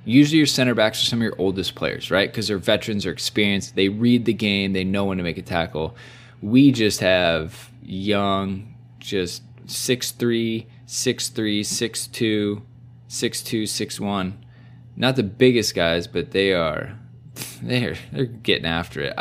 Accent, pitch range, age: American, 95-125 Hz, 20-39